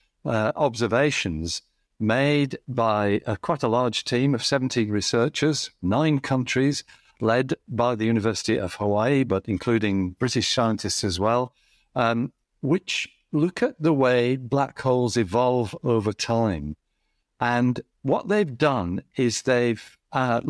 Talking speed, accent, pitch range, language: 130 wpm, British, 110-135 Hz, English